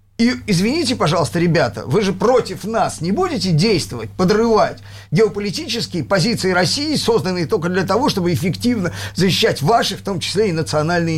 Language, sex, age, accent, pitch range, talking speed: Russian, male, 50-69, native, 140-230 Hz, 150 wpm